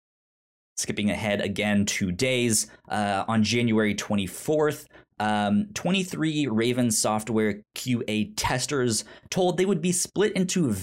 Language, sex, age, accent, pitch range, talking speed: English, male, 20-39, American, 105-130 Hz, 115 wpm